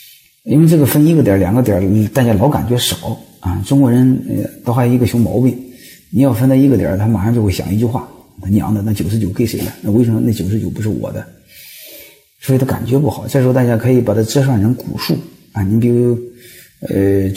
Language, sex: Chinese, male